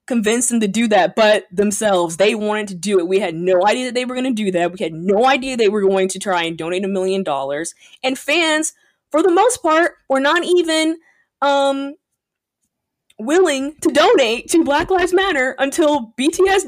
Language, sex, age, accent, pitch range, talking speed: English, female, 20-39, American, 170-270 Hz, 200 wpm